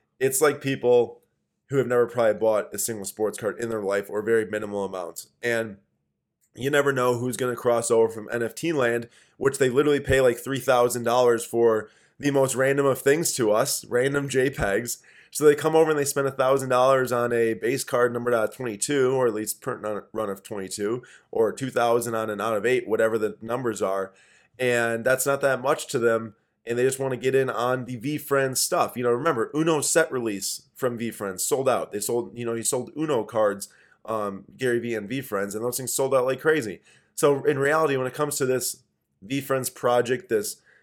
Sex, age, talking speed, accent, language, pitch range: male, 20-39, 210 wpm, American, English, 115-135 Hz